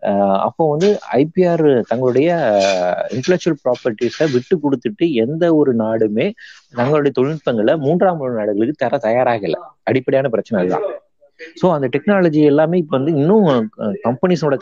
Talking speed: 115 wpm